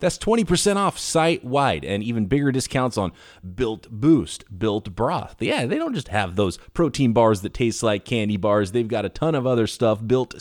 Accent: American